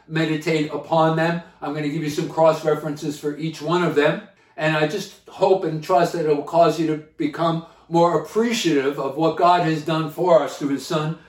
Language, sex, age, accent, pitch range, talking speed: English, male, 50-69, American, 155-185 Hz, 220 wpm